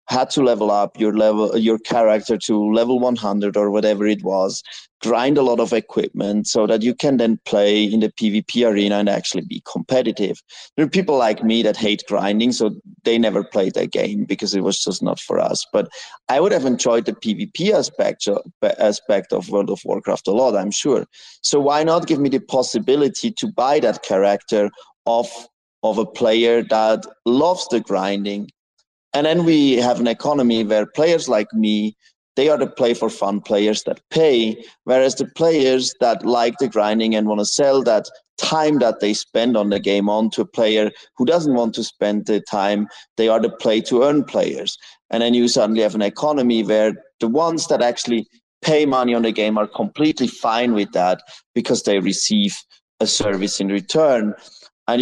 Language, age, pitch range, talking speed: English, 30-49, 105-130 Hz, 190 wpm